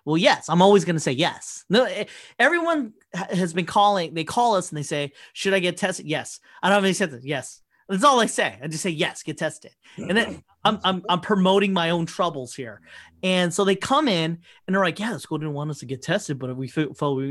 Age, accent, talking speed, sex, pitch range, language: 30-49, American, 250 wpm, male, 155-205 Hz, English